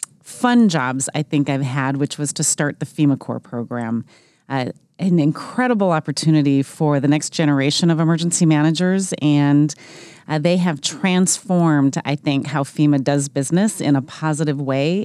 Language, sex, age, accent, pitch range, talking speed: English, female, 30-49, American, 145-185 Hz, 160 wpm